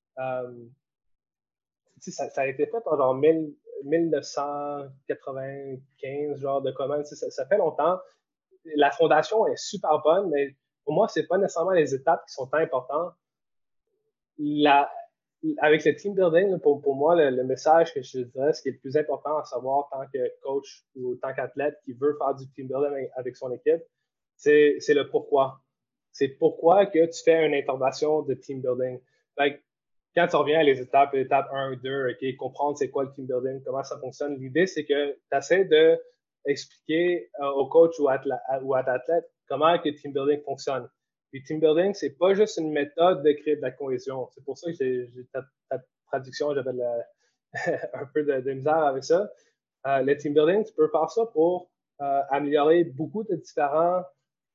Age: 20-39